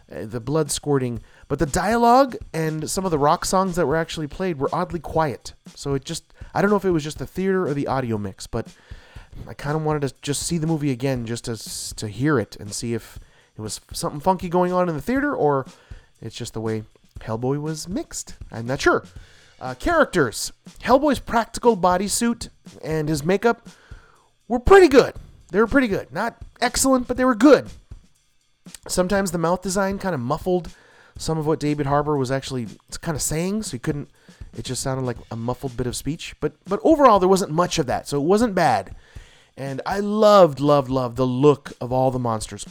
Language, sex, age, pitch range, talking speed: English, male, 30-49, 125-180 Hz, 205 wpm